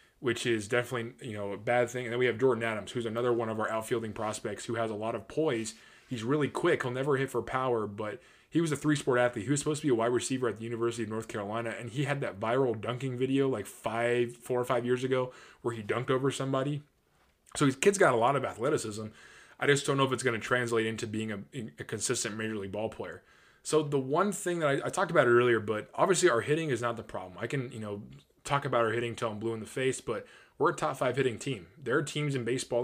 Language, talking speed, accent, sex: English, 265 wpm, American, male